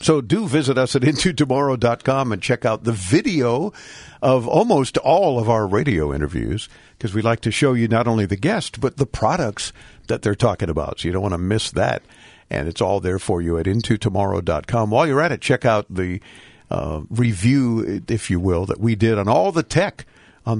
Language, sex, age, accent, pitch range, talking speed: English, male, 50-69, American, 105-145 Hz, 205 wpm